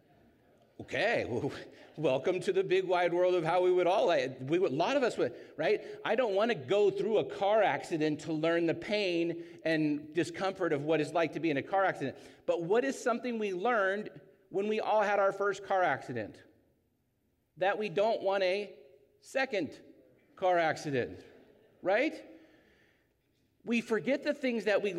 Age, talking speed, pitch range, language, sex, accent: 40-59, 175 wpm, 145-220 Hz, English, male, American